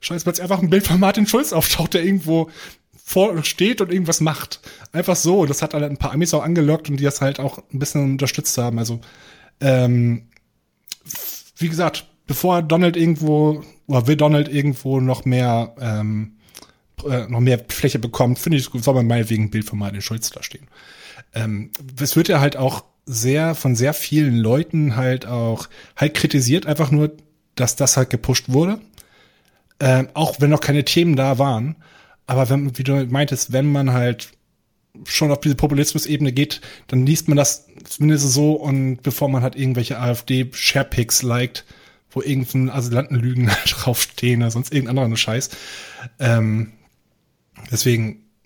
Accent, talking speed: German, 165 wpm